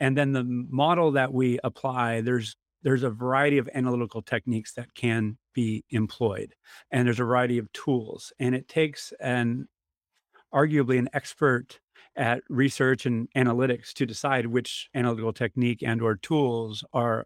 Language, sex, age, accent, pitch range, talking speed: English, male, 40-59, American, 120-135 Hz, 155 wpm